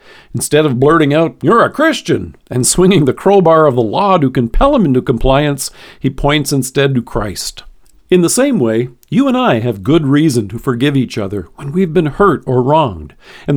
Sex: male